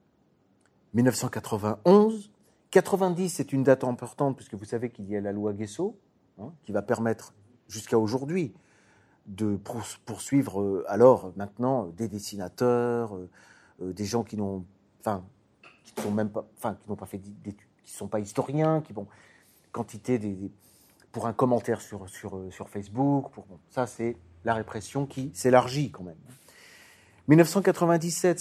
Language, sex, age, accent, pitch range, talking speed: French, male, 40-59, French, 105-135 Hz, 155 wpm